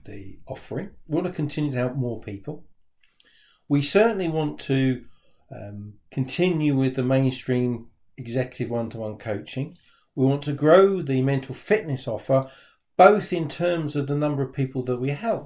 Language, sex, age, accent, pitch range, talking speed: English, male, 50-69, British, 125-165 Hz, 160 wpm